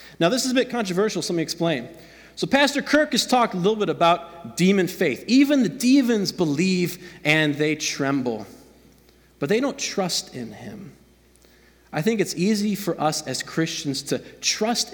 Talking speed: 175 wpm